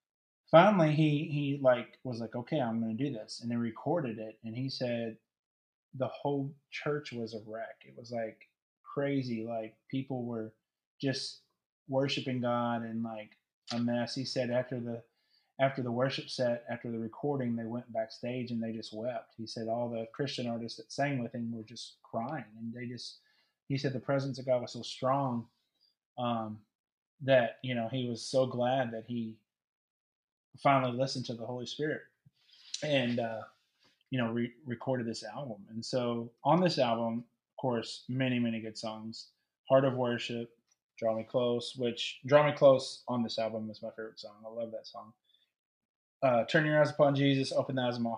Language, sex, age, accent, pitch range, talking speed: English, male, 30-49, American, 115-135 Hz, 185 wpm